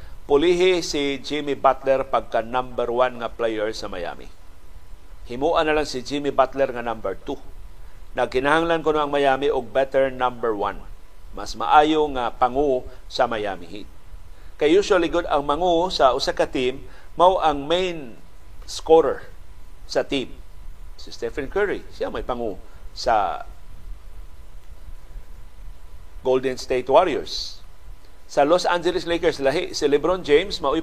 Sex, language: male, Filipino